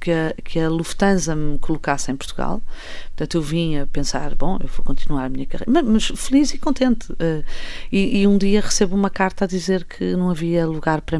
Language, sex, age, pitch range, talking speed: Portuguese, female, 40-59, 155-220 Hz, 215 wpm